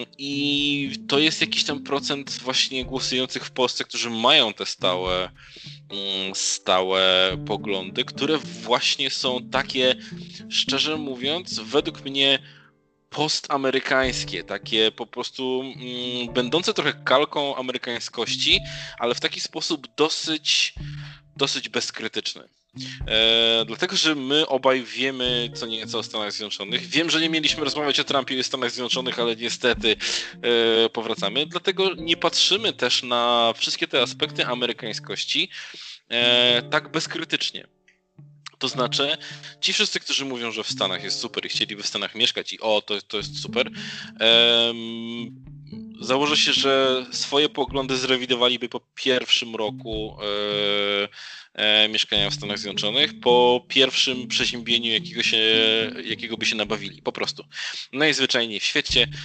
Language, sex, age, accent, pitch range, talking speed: Polish, male, 20-39, native, 110-145 Hz, 130 wpm